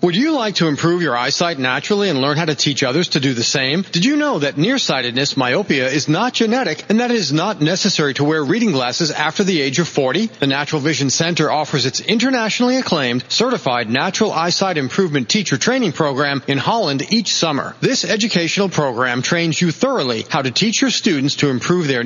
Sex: male